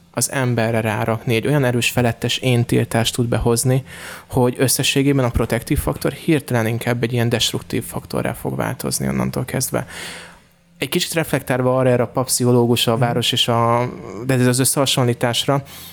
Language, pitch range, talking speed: Hungarian, 115-140 Hz, 150 wpm